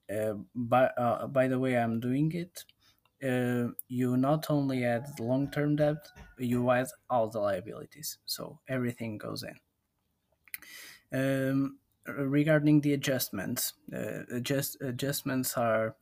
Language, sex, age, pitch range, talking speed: English, male, 20-39, 115-140 Hz, 120 wpm